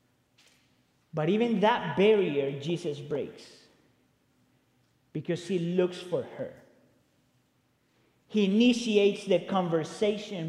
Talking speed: 85 wpm